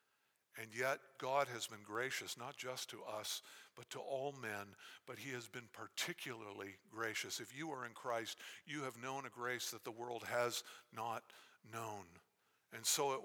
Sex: male